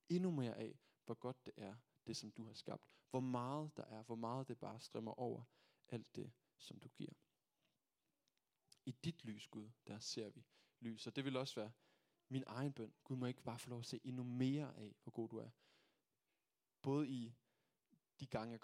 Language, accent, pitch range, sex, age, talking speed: Danish, native, 115-140 Hz, male, 20-39, 205 wpm